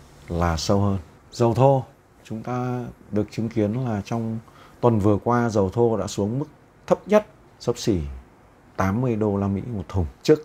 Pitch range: 90-115 Hz